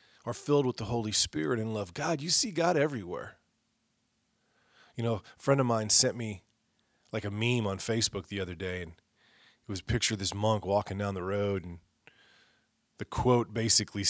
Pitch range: 105-135 Hz